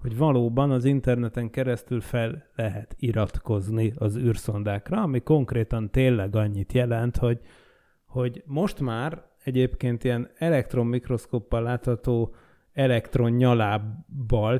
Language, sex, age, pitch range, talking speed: Hungarian, male, 30-49, 115-135 Hz, 105 wpm